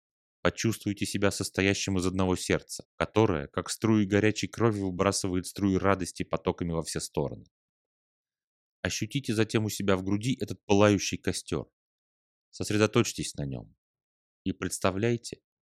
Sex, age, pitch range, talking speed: male, 30-49, 90-110 Hz, 120 wpm